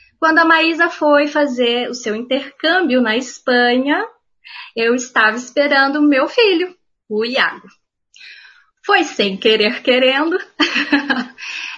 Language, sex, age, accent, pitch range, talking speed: Portuguese, female, 20-39, Brazilian, 225-295 Hz, 110 wpm